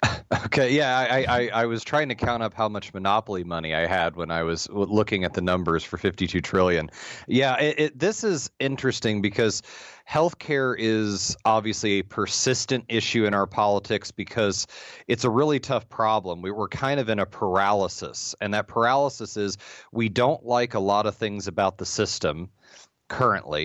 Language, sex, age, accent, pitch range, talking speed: English, male, 30-49, American, 95-115 Hz, 180 wpm